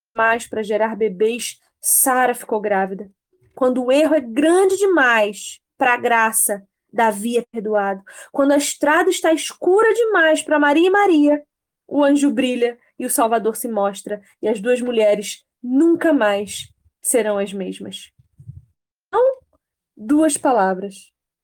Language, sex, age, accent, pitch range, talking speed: Portuguese, female, 20-39, Brazilian, 220-280 Hz, 135 wpm